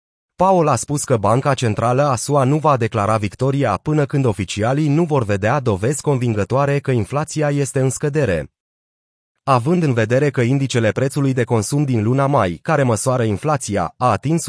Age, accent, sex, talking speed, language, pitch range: 30-49, native, male, 170 wpm, Romanian, 115-150 Hz